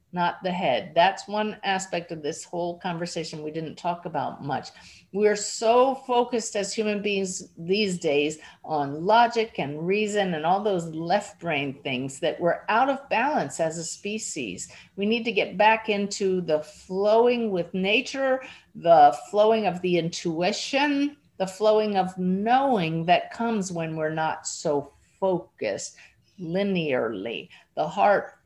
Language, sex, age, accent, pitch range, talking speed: English, female, 50-69, American, 170-225 Hz, 150 wpm